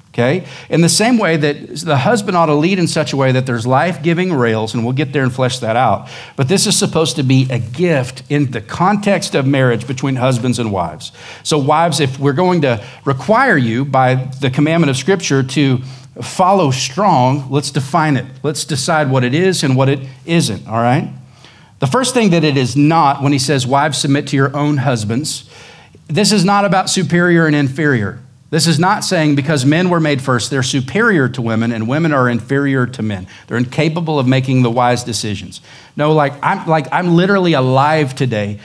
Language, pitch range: English, 125-165 Hz